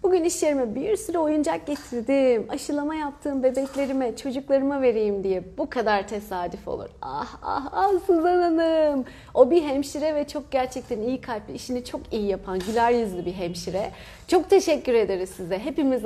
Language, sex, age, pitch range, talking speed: Turkish, female, 30-49, 195-275 Hz, 155 wpm